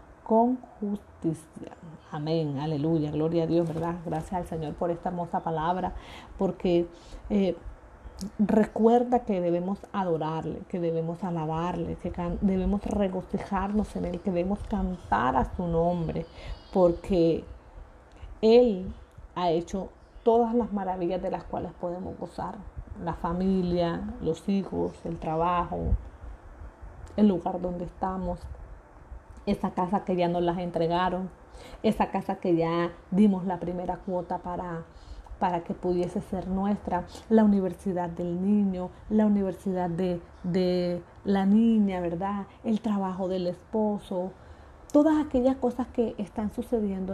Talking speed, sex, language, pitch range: 125 wpm, female, Spanish, 170-200 Hz